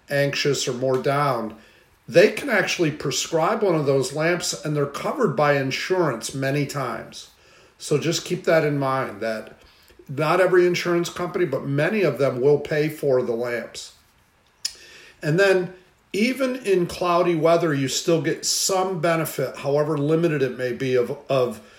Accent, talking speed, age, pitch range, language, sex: American, 155 wpm, 50-69, 125-165 Hz, English, male